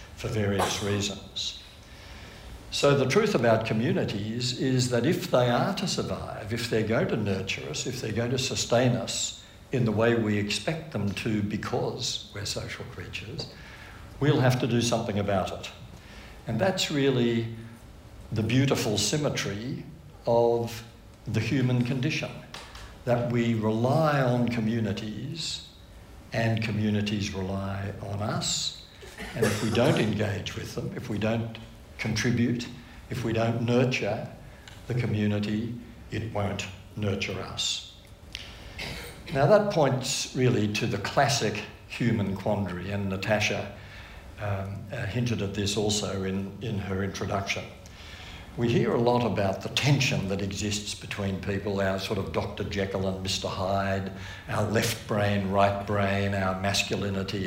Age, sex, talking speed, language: 60-79, male, 140 wpm, English